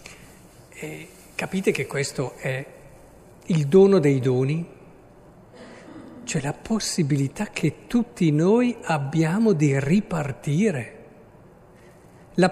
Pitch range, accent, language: 160-220 Hz, native, Italian